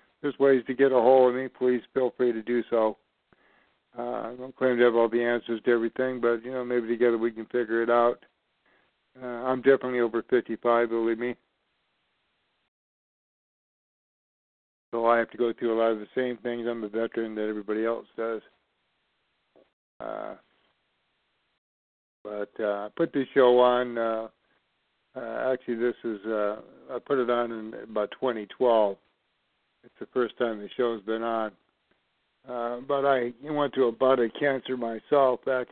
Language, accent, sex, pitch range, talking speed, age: English, American, male, 110-125 Hz, 165 wpm, 50-69